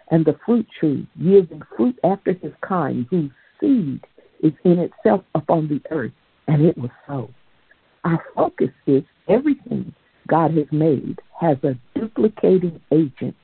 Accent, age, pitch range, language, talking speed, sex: American, 60-79, 155-205 Hz, English, 145 wpm, female